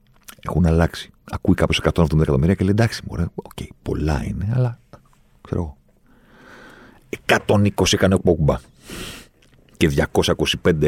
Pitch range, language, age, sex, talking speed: 80-100 Hz, Greek, 40-59, male, 120 wpm